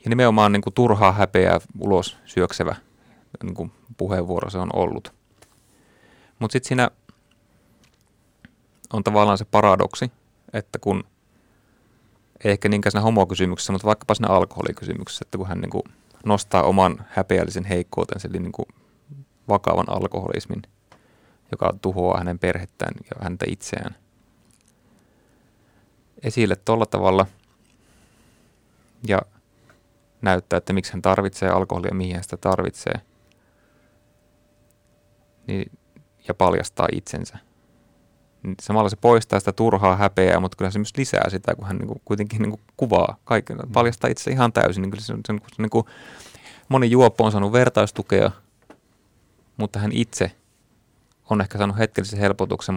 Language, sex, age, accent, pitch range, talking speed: Finnish, male, 30-49, native, 95-115 Hz, 125 wpm